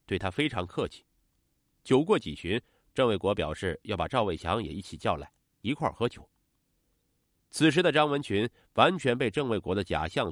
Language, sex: Chinese, male